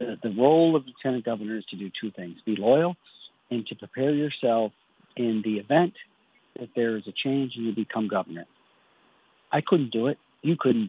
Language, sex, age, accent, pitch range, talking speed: English, male, 50-69, American, 110-140 Hz, 185 wpm